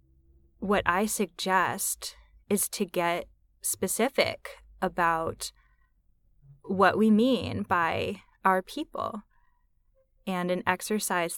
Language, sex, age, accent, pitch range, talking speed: English, female, 10-29, American, 165-220 Hz, 90 wpm